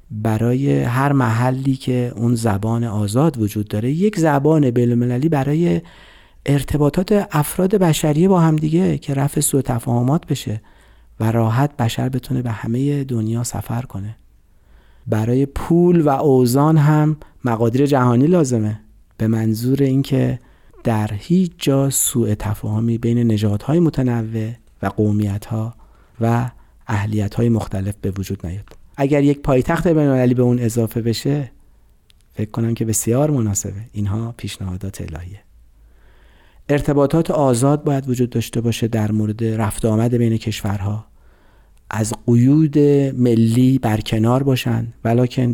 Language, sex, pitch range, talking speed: Persian, male, 110-140 Hz, 125 wpm